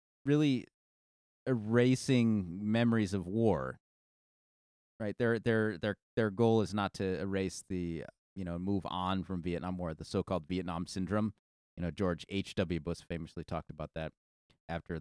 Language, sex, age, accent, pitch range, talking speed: English, male, 30-49, American, 80-105 Hz, 150 wpm